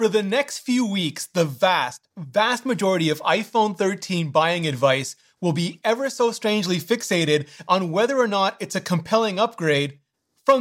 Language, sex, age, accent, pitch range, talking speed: English, male, 30-49, American, 165-220 Hz, 165 wpm